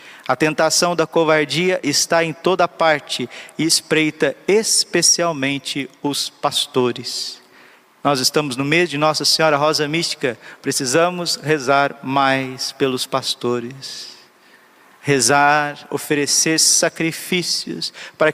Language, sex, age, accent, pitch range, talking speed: Portuguese, male, 50-69, Brazilian, 150-210 Hz, 100 wpm